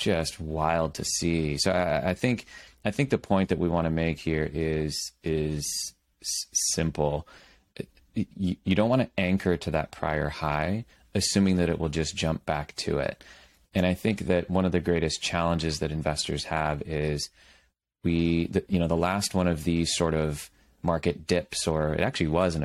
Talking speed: 185 wpm